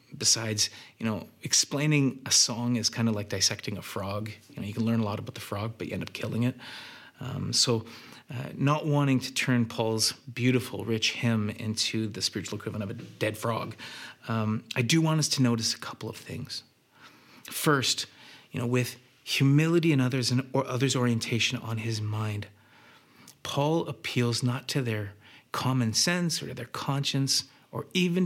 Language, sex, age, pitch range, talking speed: English, male, 30-49, 115-140 Hz, 175 wpm